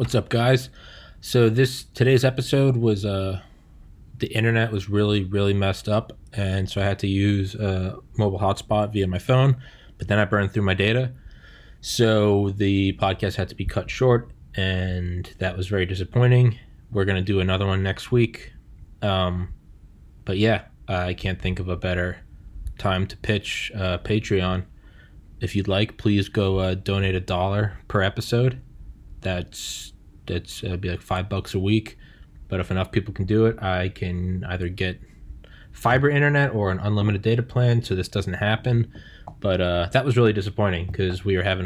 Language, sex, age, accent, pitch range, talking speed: English, male, 20-39, American, 90-105 Hz, 175 wpm